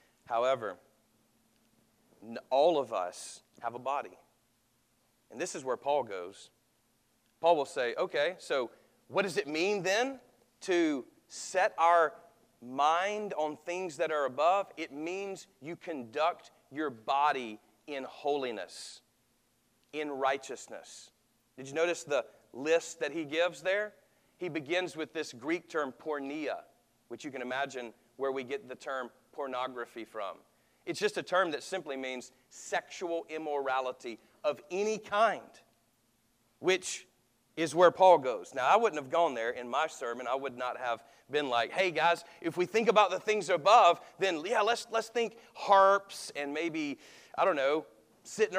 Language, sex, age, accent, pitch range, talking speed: English, male, 40-59, American, 140-195 Hz, 150 wpm